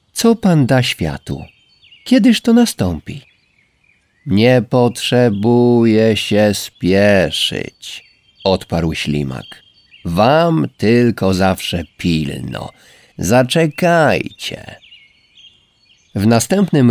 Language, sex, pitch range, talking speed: Polish, male, 95-125 Hz, 70 wpm